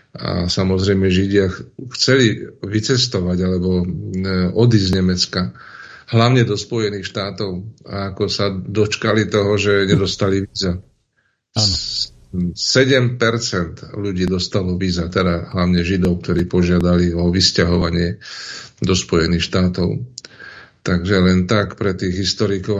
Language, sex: Czech, male